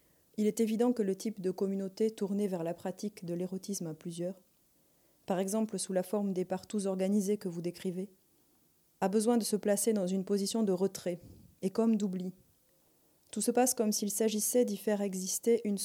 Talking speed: 190 wpm